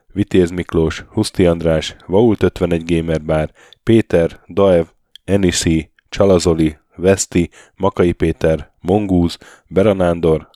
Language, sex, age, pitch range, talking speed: Hungarian, male, 10-29, 80-95 Hz, 95 wpm